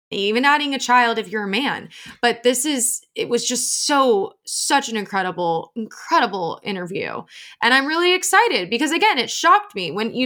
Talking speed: 180 wpm